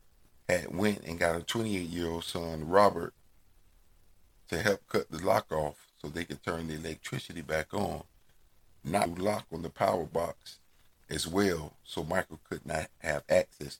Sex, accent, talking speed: male, American, 150 wpm